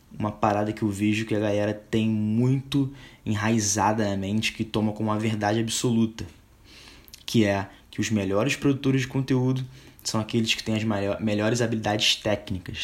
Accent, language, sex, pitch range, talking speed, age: Brazilian, Portuguese, male, 105-120 Hz, 170 wpm, 20-39